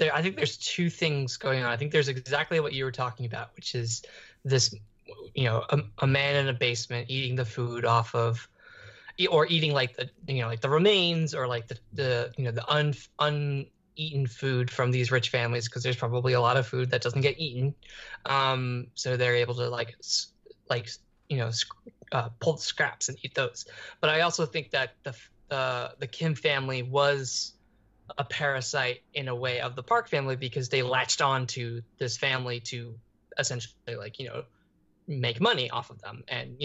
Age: 20-39